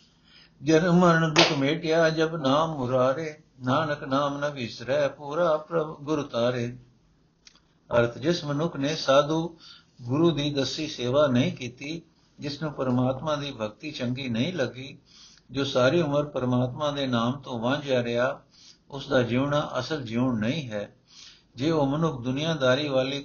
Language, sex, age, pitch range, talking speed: Punjabi, male, 60-79, 125-150 Hz, 135 wpm